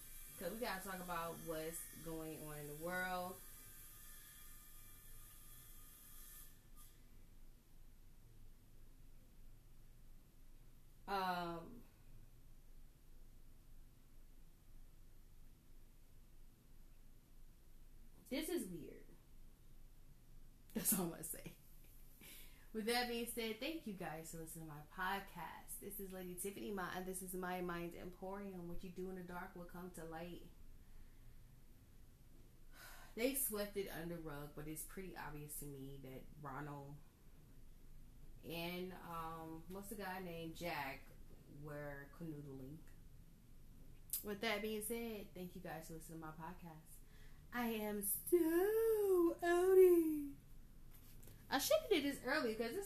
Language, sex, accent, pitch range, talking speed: English, female, American, 120-195 Hz, 110 wpm